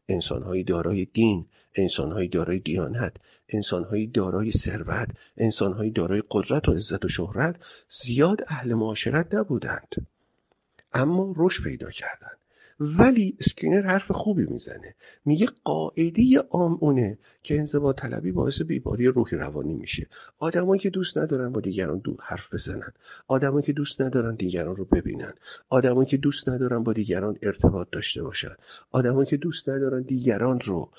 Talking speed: 140 wpm